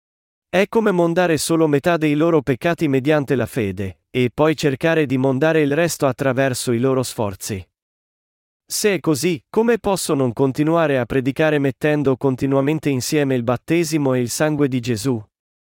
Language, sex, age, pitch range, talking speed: Italian, male, 40-59, 125-160 Hz, 155 wpm